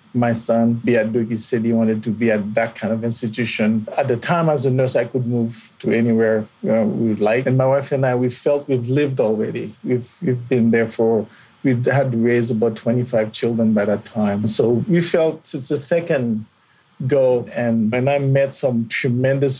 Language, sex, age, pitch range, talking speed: English, male, 50-69, 115-135 Hz, 210 wpm